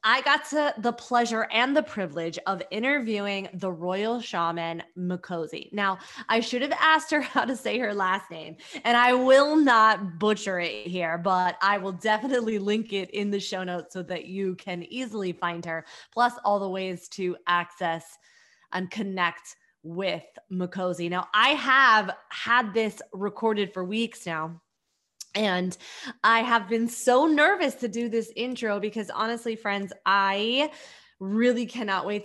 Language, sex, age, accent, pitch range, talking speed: English, female, 20-39, American, 185-230 Hz, 160 wpm